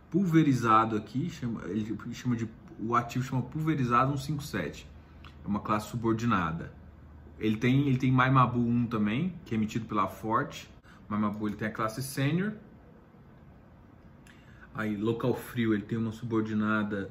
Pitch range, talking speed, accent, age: 110-145 Hz, 120 wpm, Brazilian, 20-39